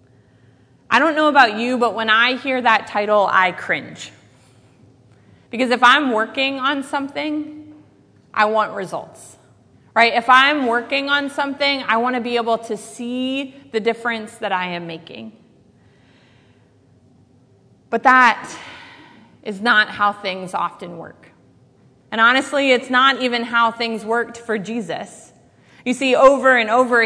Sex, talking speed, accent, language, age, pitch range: female, 140 wpm, American, English, 30-49, 190-250 Hz